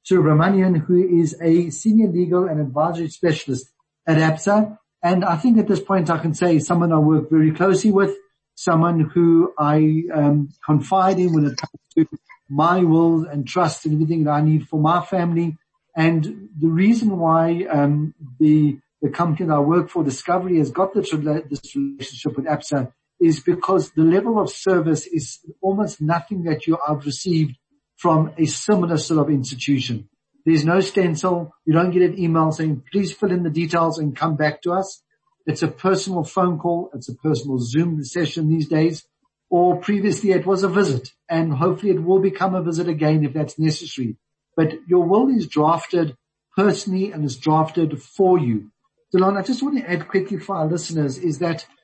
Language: English